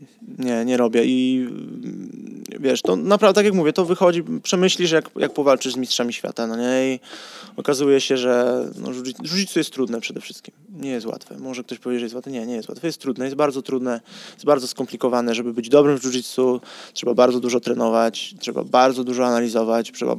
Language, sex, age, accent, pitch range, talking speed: Polish, male, 20-39, native, 120-155 Hz, 195 wpm